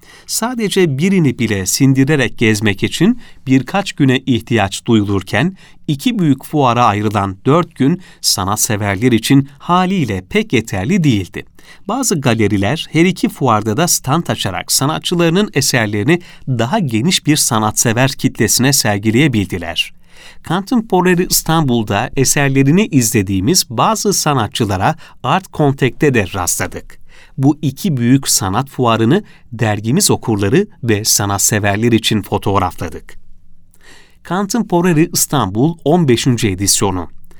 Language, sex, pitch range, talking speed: Turkish, male, 110-165 Hz, 105 wpm